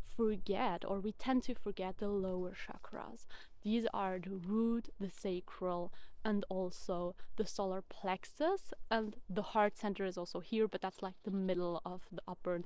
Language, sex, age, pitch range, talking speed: English, female, 20-39, 195-230 Hz, 170 wpm